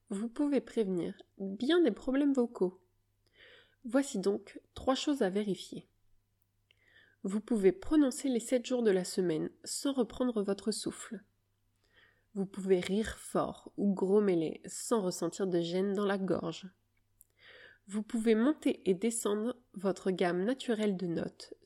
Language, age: French, 20-39